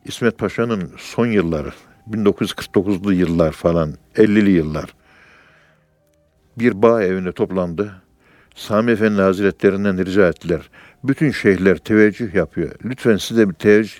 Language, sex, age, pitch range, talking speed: Turkish, male, 60-79, 95-130 Hz, 115 wpm